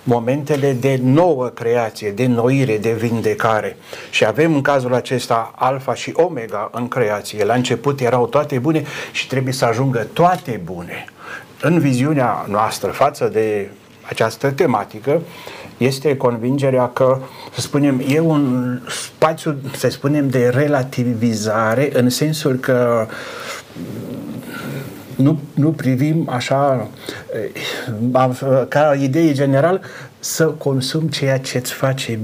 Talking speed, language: 120 wpm, Romanian